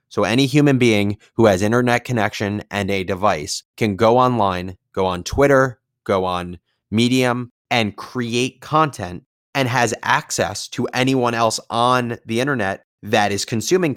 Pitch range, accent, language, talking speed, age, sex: 105-135 Hz, American, English, 150 wpm, 30-49, male